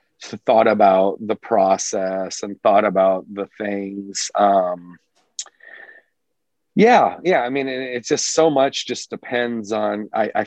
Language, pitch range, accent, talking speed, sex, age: English, 95-120 Hz, American, 140 wpm, male, 40-59